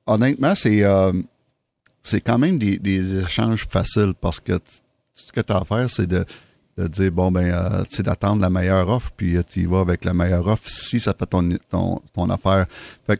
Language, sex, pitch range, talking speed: French, male, 90-110 Hz, 220 wpm